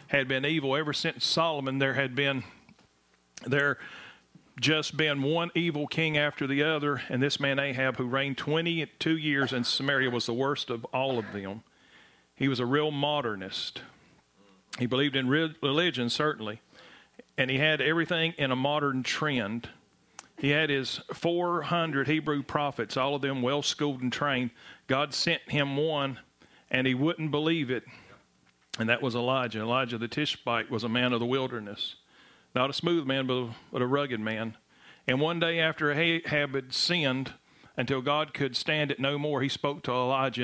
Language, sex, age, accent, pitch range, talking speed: English, male, 40-59, American, 125-145 Hz, 170 wpm